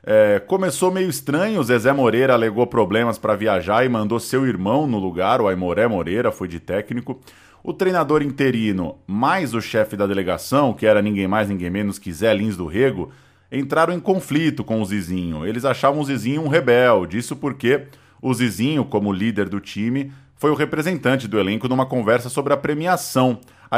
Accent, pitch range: Brazilian, 105-140 Hz